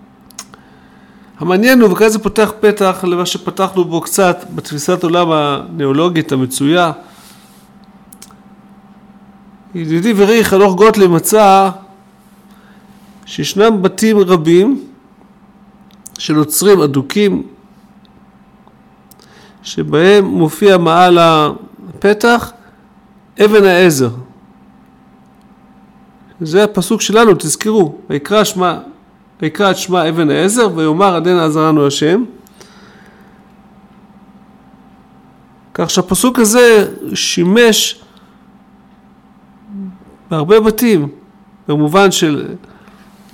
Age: 50-69